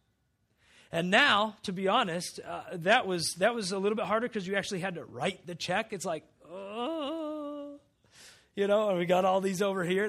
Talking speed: 200 wpm